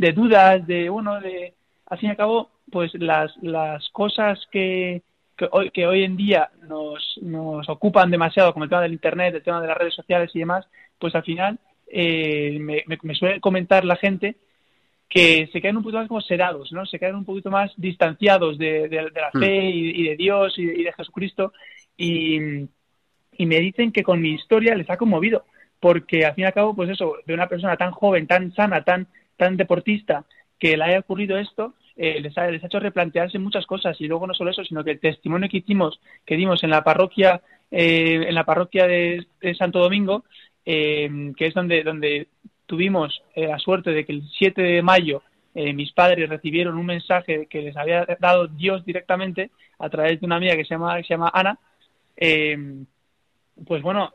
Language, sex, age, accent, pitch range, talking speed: Spanish, male, 30-49, Spanish, 160-190 Hz, 205 wpm